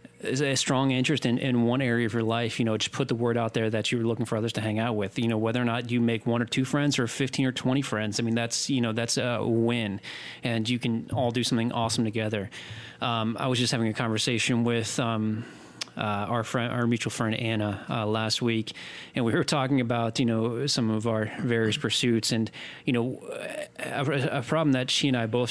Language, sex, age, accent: English, male, 30-49, American